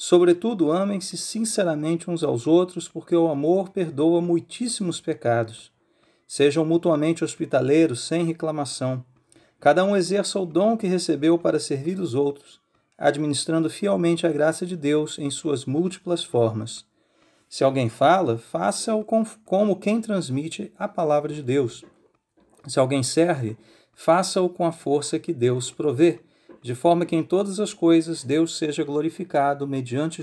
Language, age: Portuguese, 40-59